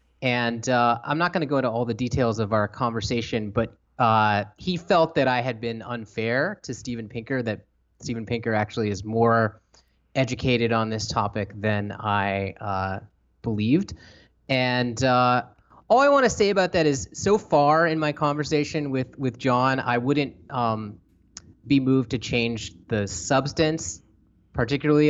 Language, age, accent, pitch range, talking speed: English, 30-49, American, 105-130 Hz, 165 wpm